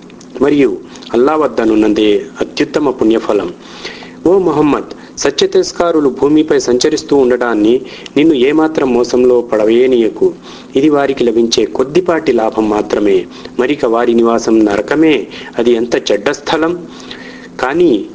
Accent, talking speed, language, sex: native, 95 wpm, Telugu, male